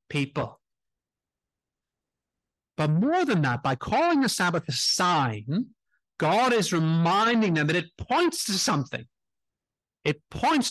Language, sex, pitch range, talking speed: English, male, 130-205 Hz, 125 wpm